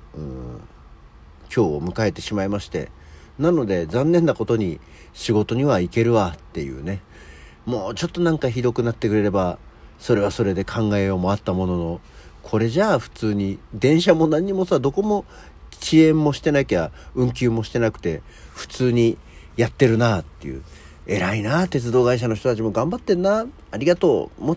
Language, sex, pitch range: Japanese, male, 85-135 Hz